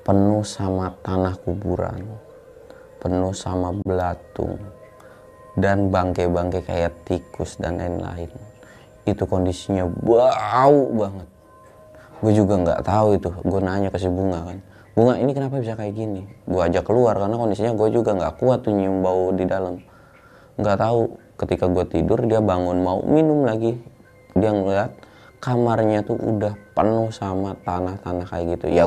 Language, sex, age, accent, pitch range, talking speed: Indonesian, male, 20-39, native, 90-105 Hz, 145 wpm